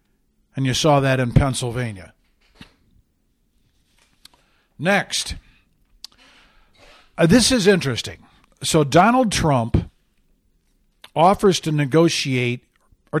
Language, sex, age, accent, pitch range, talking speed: English, male, 60-79, American, 125-160 Hz, 80 wpm